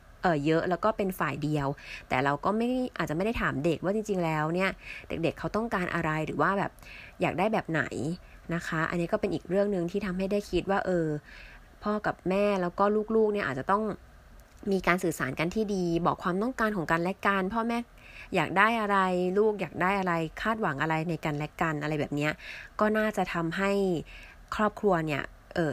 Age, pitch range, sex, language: 20-39, 160-200 Hz, female, Thai